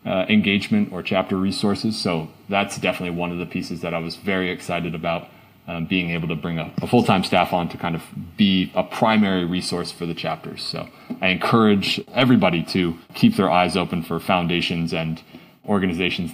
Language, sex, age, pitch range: English, male, 30-49, 85-100 Hz